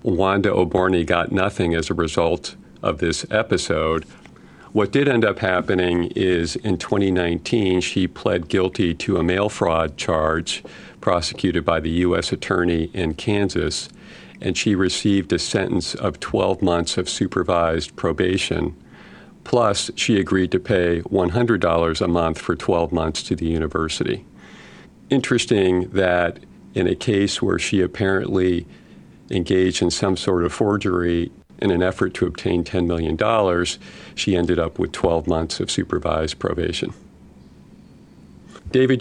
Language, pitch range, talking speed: English, 85-95 Hz, 135 wpm